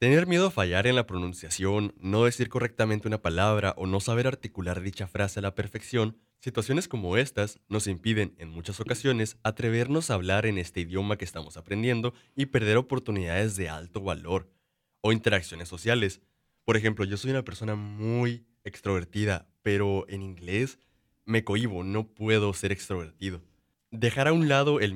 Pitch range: 95-115 Hz